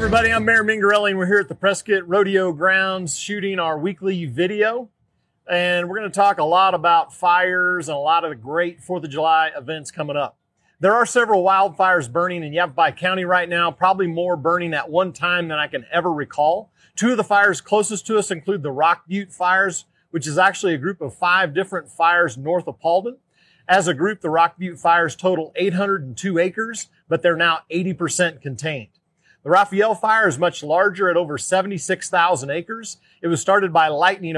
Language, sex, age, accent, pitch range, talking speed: English, male, 30-49, American, 165-195 Hz, 200 wpm